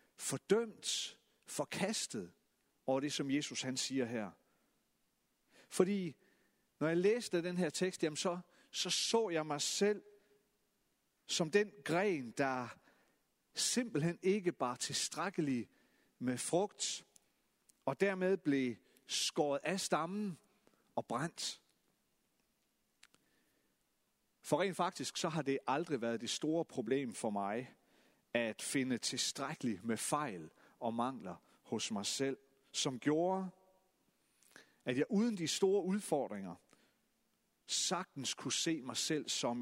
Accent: native